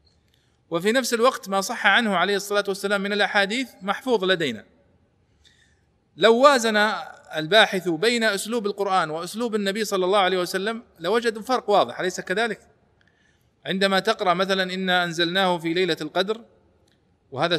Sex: male